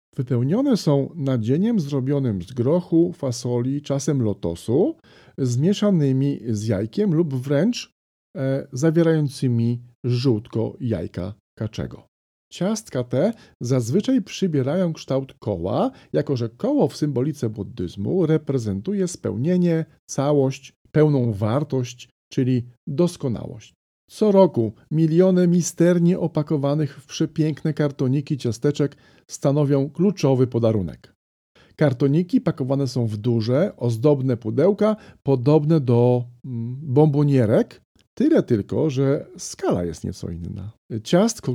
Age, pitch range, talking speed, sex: 40-59, 120-160 Hz, 100 wpm, male